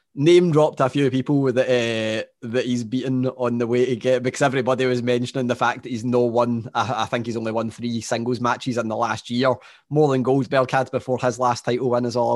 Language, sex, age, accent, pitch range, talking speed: English, male, 20-39, British, 125-155 Hz, 235 wpm